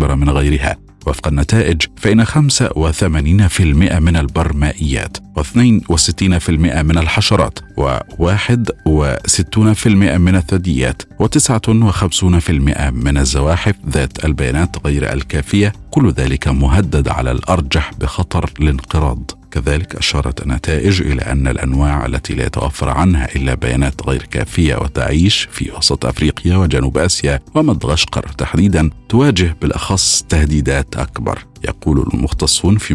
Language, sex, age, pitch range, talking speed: Arabic, male, 50-69, 70-95 Hz, 110 wpm